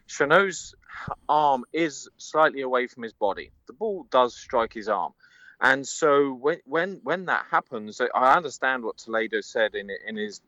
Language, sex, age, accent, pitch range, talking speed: English, male, 30-49, British, 110-185 Hz, 165 wpm